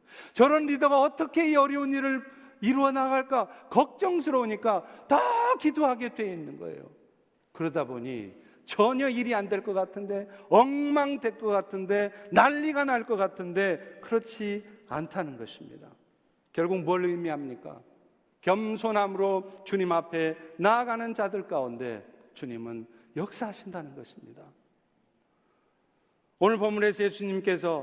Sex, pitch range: male, 190-265 Hz